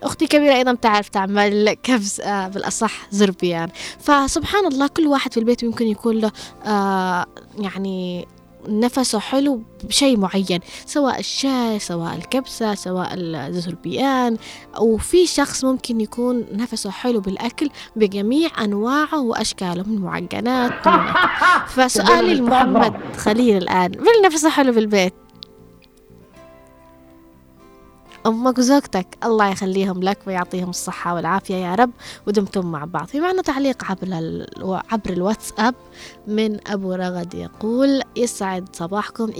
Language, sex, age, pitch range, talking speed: Arabic, female, 20-39, 185-250 Hz, 110 wpm